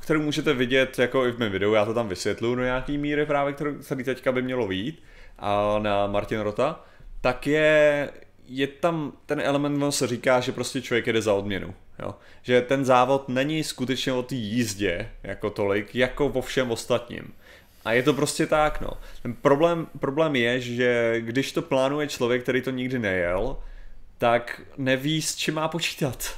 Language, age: Czech, 30-49